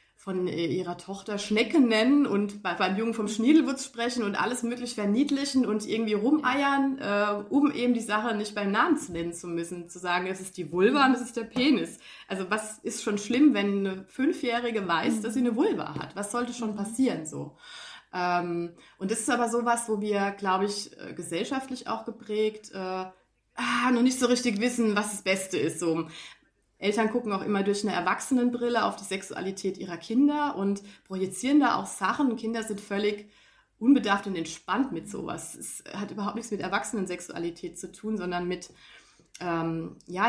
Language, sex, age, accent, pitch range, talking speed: German, female, 30-49, German, 185-235 Hz, 180 wpm